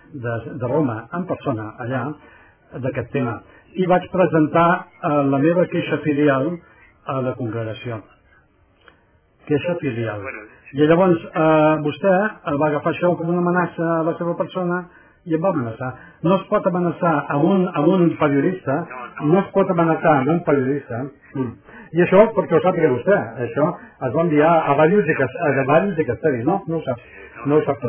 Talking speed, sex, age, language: 145 wpm, male, 60-79, English